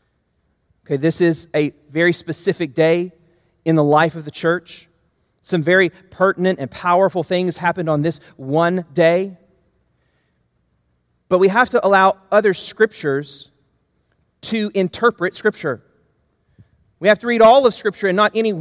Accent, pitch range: American, 170-220 Hz